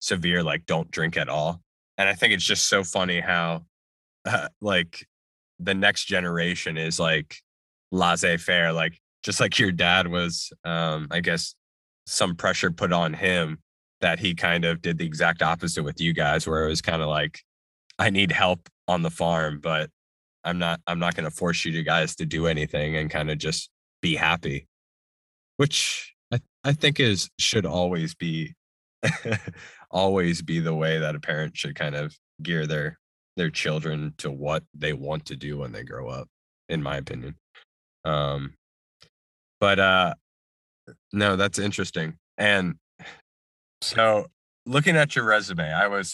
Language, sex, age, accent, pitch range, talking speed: English, male, 20-39, American, 75-95 Hz, 165 wpm